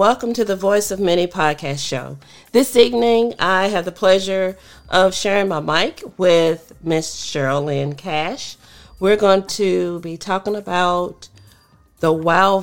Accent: American